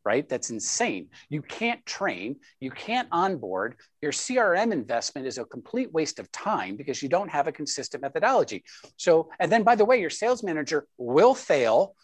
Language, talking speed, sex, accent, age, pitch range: English, 180 wpm, male, American, 50-69, 145-230 Hz